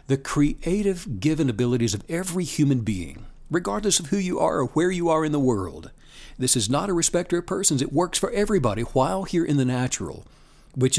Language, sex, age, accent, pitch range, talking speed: English, male, 60-79, American, 125-175 Hz, 200 wpm